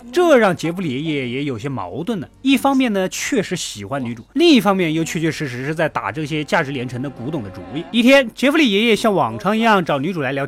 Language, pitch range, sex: Chinese, 155-240 Hz, male